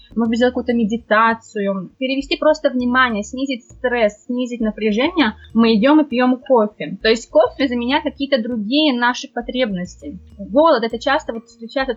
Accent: native